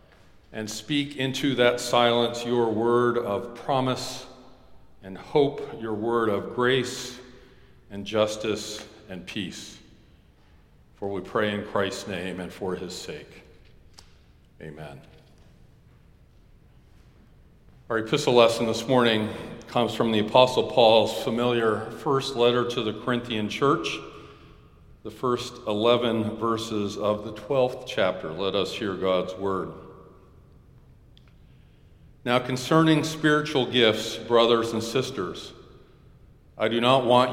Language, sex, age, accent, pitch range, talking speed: English, male, 50-69, American, 105-130 Hz, 115 wpm